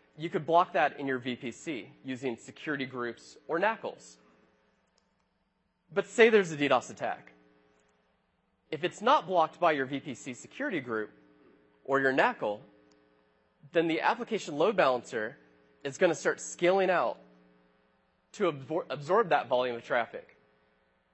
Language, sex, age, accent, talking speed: English, male, 20-39, American, 135 wpm